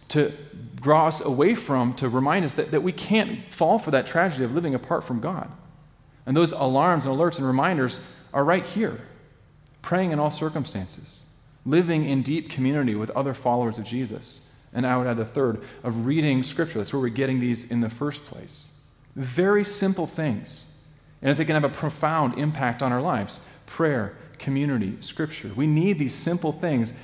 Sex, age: male, 40-59